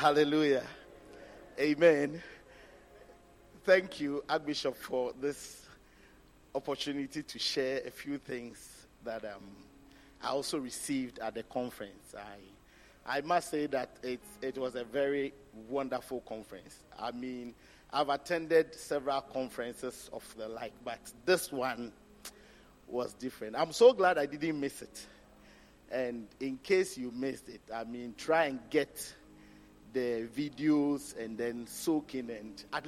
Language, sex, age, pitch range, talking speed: English, male, 50-69, 120-150 Hz, 130 wpm